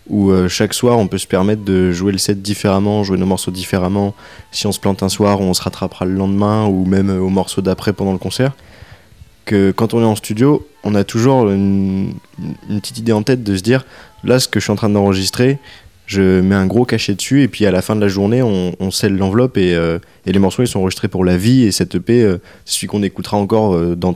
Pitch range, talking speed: 95-110 Hz, 250 wpm